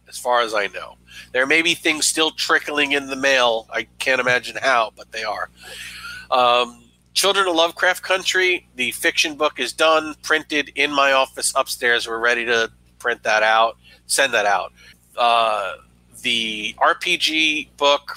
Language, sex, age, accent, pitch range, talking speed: English, male, 40-59, American, 110-145 Hz, 160 wpm